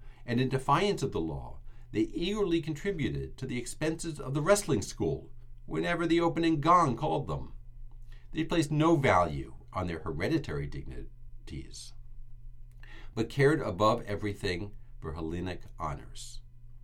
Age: 50-69